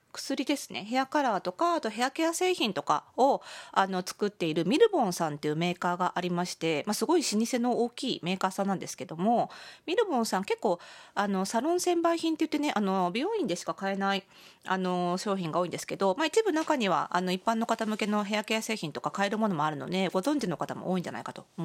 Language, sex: Japanese, female